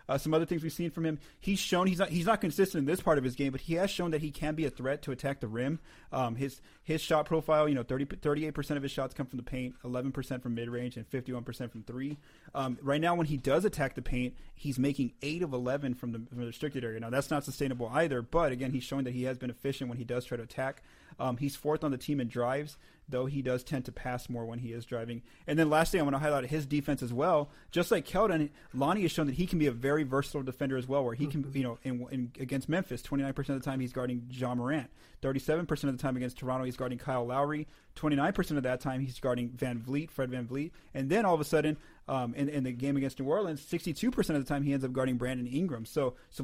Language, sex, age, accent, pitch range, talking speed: English, male, 30-49, American, 125-150 Hz, 265 wpm